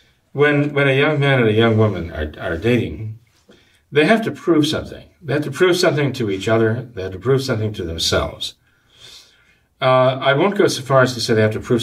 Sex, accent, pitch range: male, American, 100-130 Hz